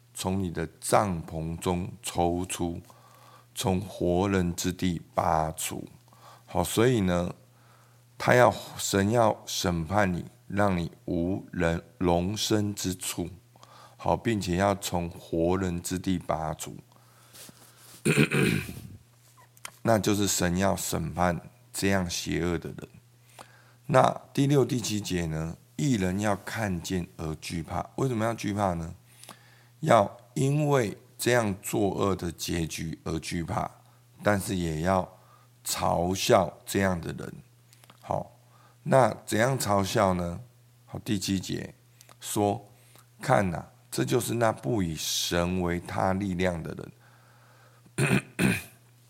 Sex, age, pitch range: male, 50-69, 90-120 Hz